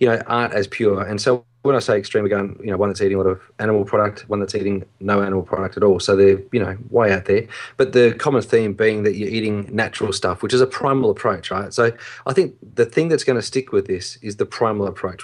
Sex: male